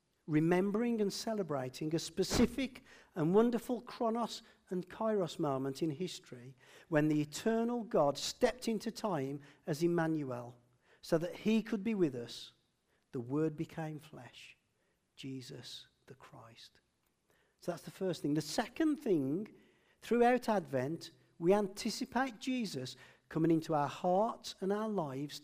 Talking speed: 130 wpm